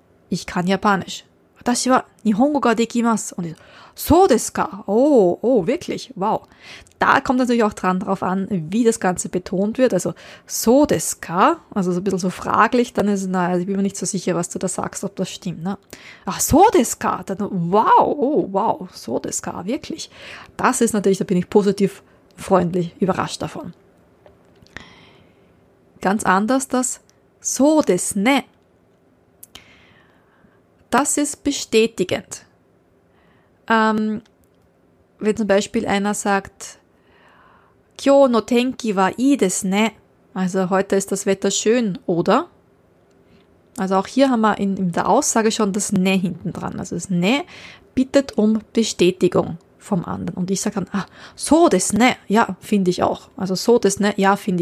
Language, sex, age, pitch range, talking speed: German, female, 20-39, 190-230 Hz, 155 wpm